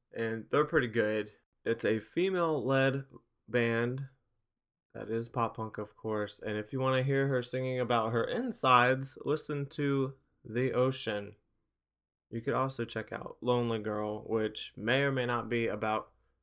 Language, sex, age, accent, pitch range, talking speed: English, male, 20-39, American, 110-145 Hz, 160 wpm